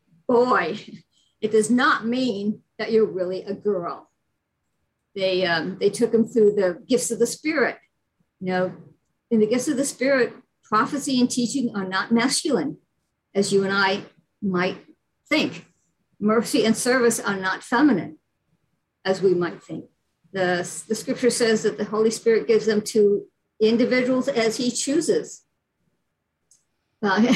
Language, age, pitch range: English, 50-69, 180-235 Hz